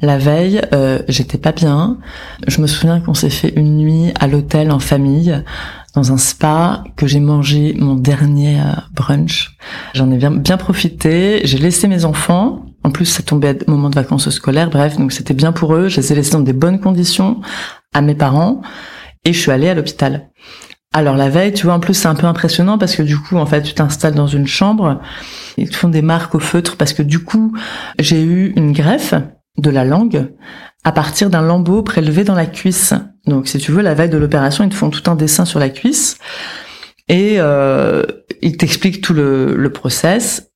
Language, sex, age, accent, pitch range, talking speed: French, female, 30-49, French, 145-185 Hz, 210 wpm